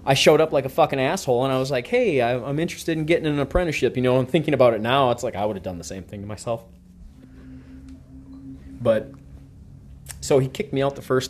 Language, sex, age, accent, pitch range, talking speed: English, male, 20-39, American, 85-135 Hz, 235 wpm